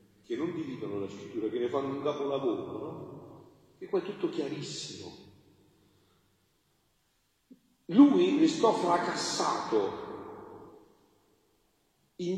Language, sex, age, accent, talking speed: Italian, male, 40-59, native, 95 wpm